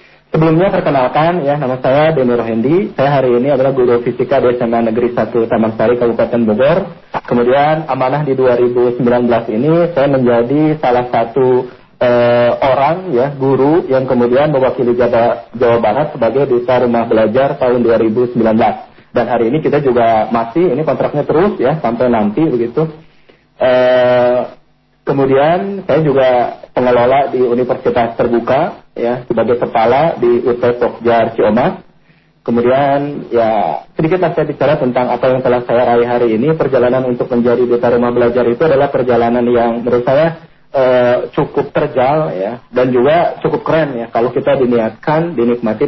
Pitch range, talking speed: 120-140 Hz, 145 wpm